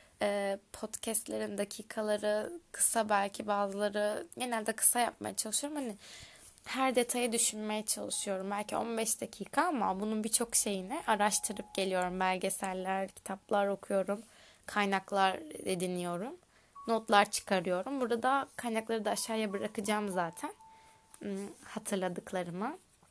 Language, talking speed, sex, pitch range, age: Turkish, 95 wpm, female, 195-235 Hz, 20-39